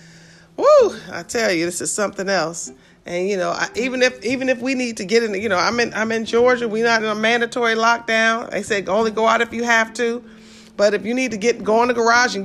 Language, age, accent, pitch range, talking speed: English, 40-59, American, 205-255 Hz, 255 wpm